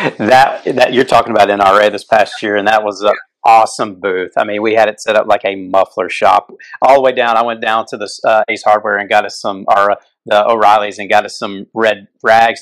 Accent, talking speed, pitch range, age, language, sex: American, 245 wpm, 100-115 Hz, 40-59, English, male